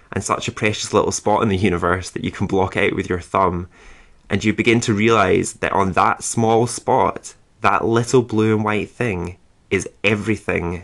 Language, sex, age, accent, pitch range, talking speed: English, male, 20-39, British, 90-110 Hz, 195 wpm